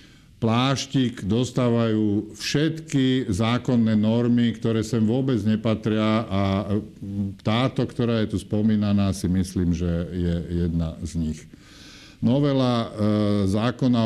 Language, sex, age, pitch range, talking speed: Slovak, male, 50-69, 95-115 Hz, 100 wpm